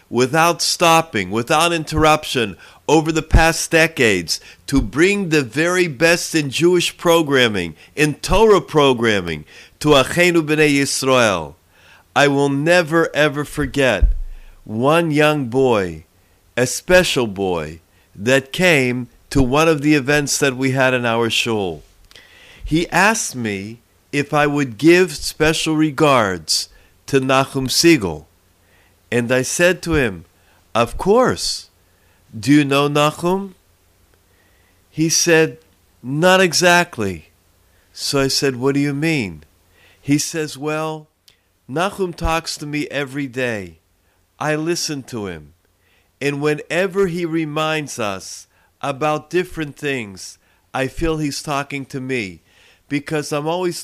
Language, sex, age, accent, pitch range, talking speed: English, male, 50-69, American, 95-155 Hz, 125 wpm